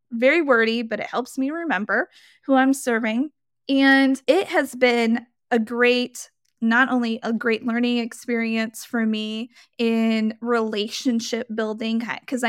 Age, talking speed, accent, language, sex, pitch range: 20-39, 135 wpm, American, English, female, 220-245 Hz